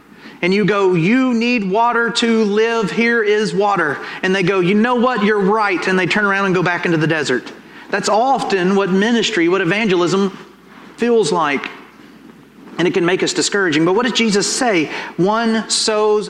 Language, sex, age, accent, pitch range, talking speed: English, male, 30-49, American, 165-210 Hz, 185 wpm